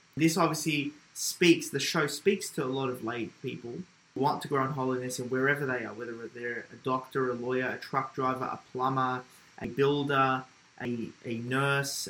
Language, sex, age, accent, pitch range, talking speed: English, male, 20-39, Australian, 135-155 Hz, 190 wpm